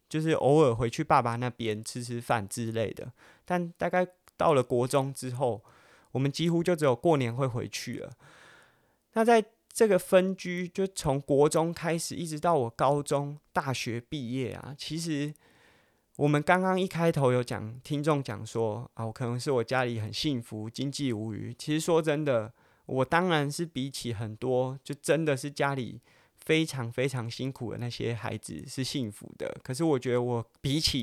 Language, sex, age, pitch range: Chinese, male, 20-39, 120-155 Hz